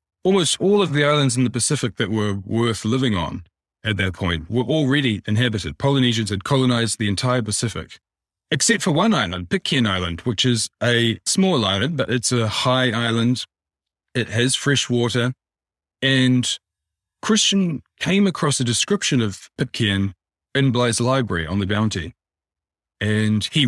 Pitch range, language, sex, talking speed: 100-130 Hz, English, male, 155 wpm